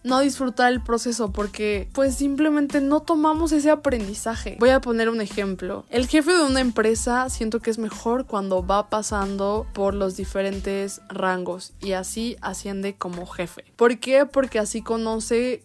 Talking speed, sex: 160 wpm, female